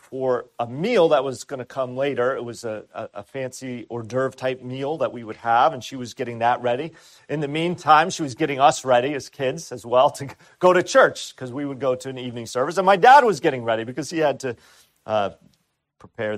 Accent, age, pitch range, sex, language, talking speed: American, 40-59, 125-165 Hz, male, English, 240 wpm